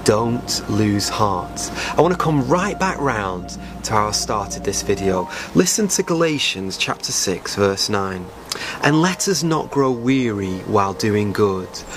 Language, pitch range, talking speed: English, 100-140 Hz, 160 wpm